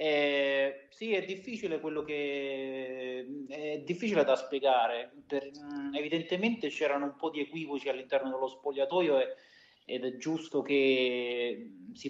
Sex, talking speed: male, 125 wpm